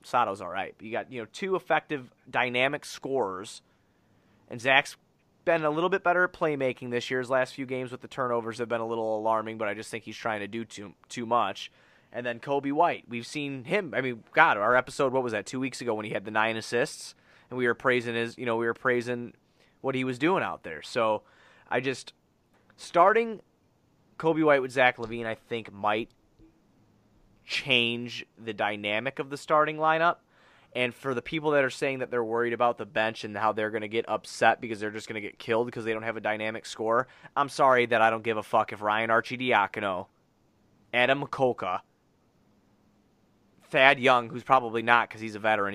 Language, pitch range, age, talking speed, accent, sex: English, 110-130 Hz, 20-39, 210 wpm, American, male